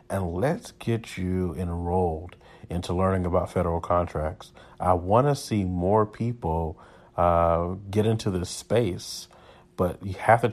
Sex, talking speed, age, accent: male, 140 wpm, 40-59, American